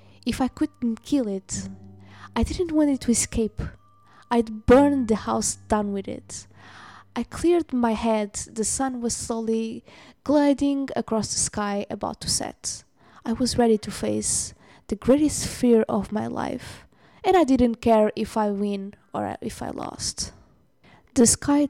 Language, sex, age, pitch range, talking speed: English, female, 20-39, 205-250 Hz, 160 wpm